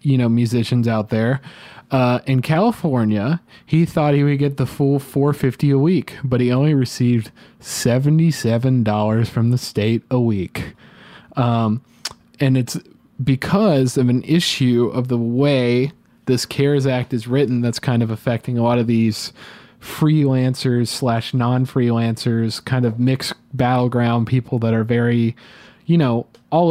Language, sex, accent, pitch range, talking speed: English, male, American, 120-140 Hz, 155 wpm